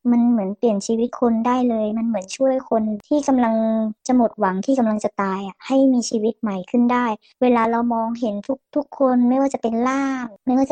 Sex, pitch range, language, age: male, 225-265 Hz, Thai, 20-39